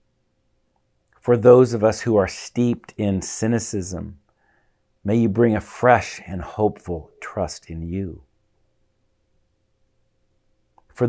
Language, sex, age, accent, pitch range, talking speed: English, male, 50-69, American, 90-120 Hz, 110 wpm